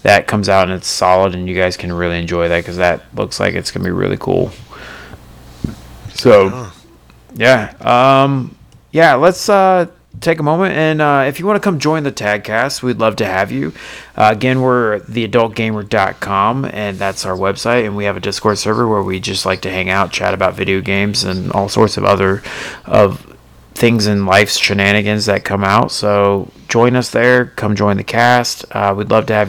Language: English